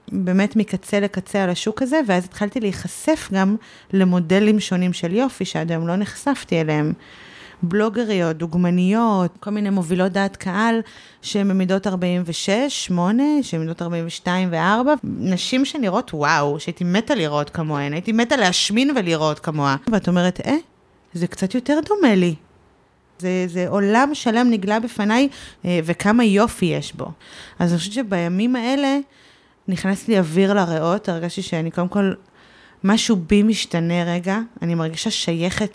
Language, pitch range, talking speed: Hebrew, 175-220 Hz, 140 wpm